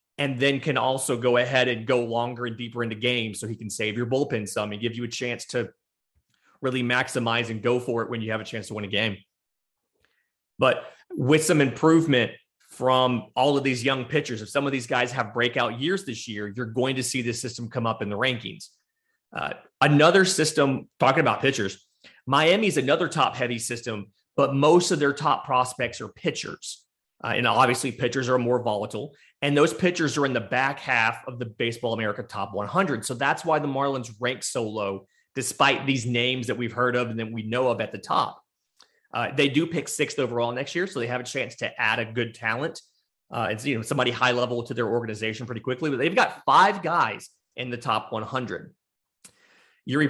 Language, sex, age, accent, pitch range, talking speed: English, male, 30-49, American, 115-140 Hz, 210 wpm